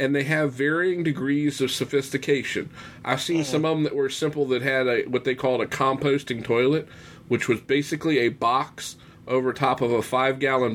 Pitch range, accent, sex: 120-145 Hz, American, male